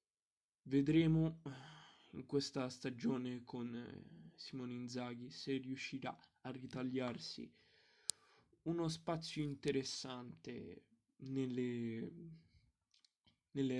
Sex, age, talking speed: male, 10-29, 75 wpm